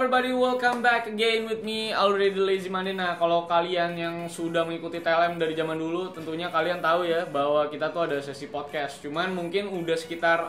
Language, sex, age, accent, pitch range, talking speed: Indonesian, male, 10-29, native, 150-200 Hz, 190 wpm